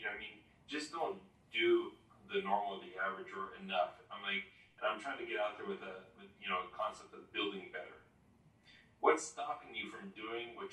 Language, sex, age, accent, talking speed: English, male, 30-49, American, 205 wpm